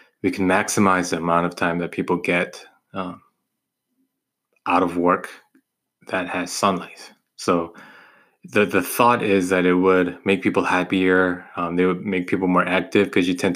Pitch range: 90-110 Hz